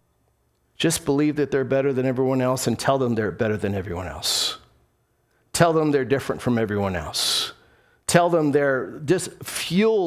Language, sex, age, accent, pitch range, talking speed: English, male, 50-69, American, 125-165 Hz, 165 wpm